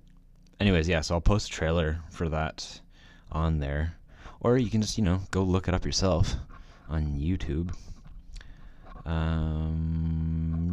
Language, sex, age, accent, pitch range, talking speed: English, male, 20-39, American, 80-90 Hz, 140 wpm